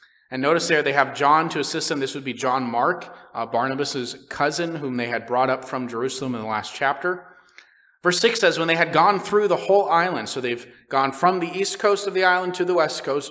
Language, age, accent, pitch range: English, 30-49, American, 130-175 Hz